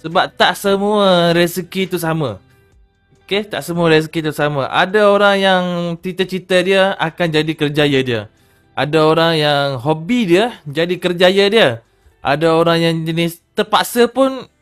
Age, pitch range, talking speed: 20-39, 145-190 Hz, 145 wpm